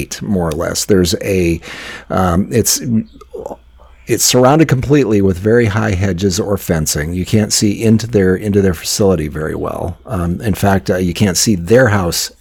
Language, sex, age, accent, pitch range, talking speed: English, male, 40-59, American, 85-110 Hz, 170 wpm